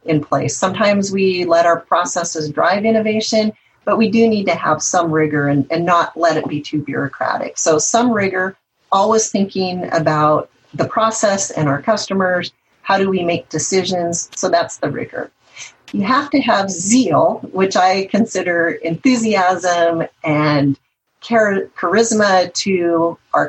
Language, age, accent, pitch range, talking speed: English, 40-59, American, 165-220 Hz, 150 wpm